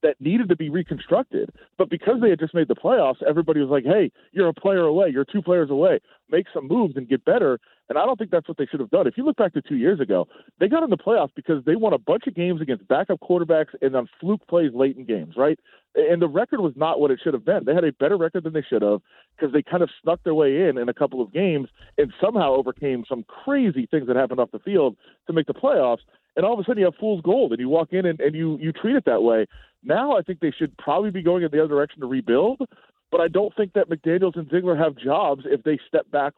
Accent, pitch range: American, 140-195 Hz